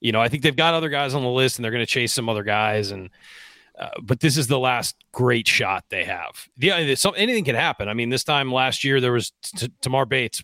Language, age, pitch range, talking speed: English, 30-49, 105-130 Hz, 265 wpm